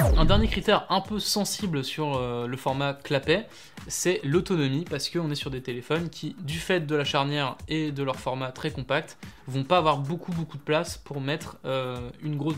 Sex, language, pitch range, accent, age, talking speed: male, French, 140-175 Hz, French, 20-39, 200 wpm